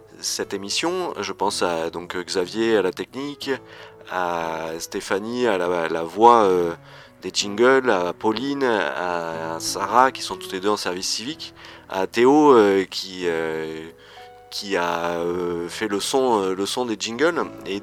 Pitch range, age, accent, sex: 85-105 Hz, 30-49, French, male